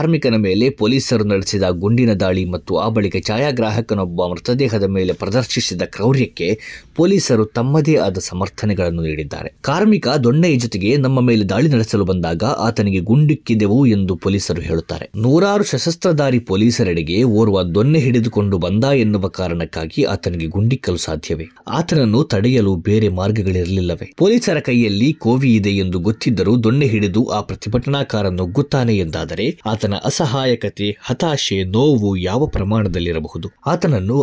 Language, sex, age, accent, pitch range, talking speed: Kannada, male, 20-39, native, 95-130 Hz, 115 wpm